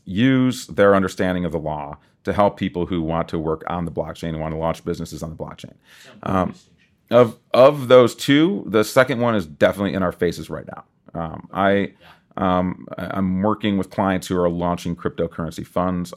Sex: male